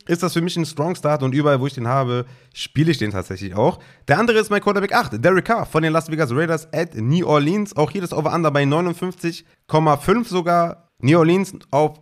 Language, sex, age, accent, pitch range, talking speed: German, male, 30-49, German, 135-175 Hz, 220 wpm